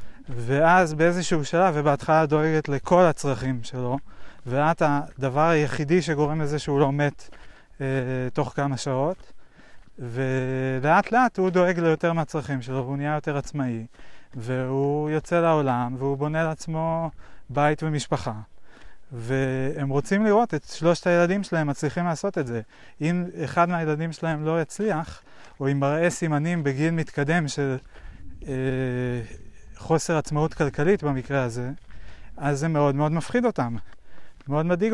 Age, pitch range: 30-49, 135-170 Hz